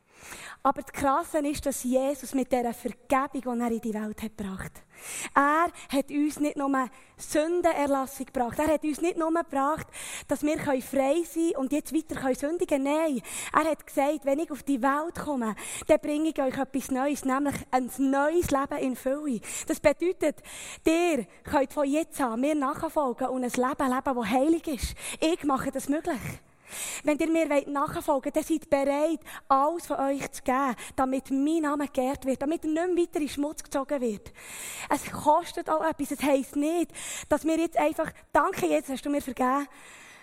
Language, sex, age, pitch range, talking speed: German, female, 20-39, 265-310 Hz, 185 wpm